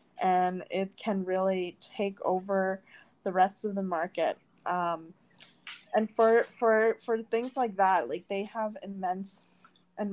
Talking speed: 140 wpm